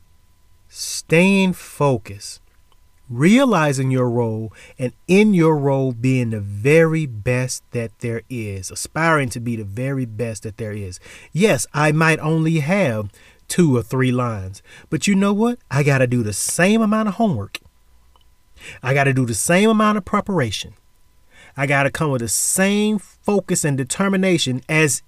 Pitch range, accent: 110-175 Hz, American